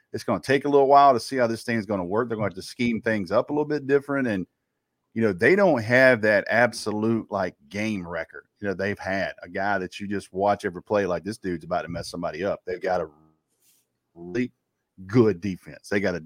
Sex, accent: male, American